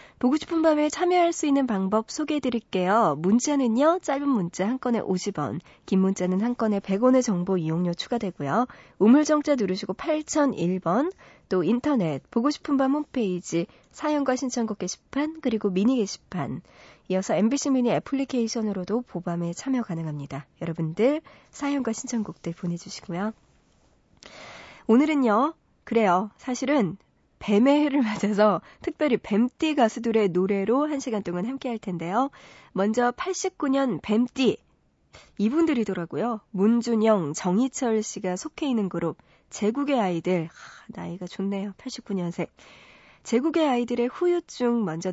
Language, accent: Korean, native